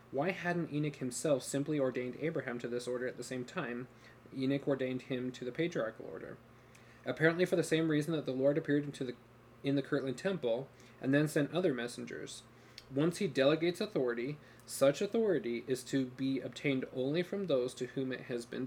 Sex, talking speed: male, 185 wpm